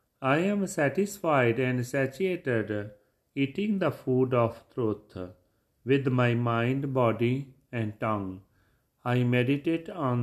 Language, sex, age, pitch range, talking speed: Punjabi, male, 40-59, 105-135 Hz, 110 wpm